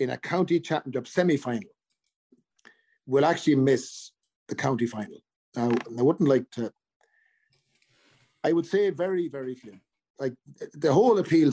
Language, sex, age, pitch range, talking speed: English, male, 40-59, 125-180 Hz, 135 wpm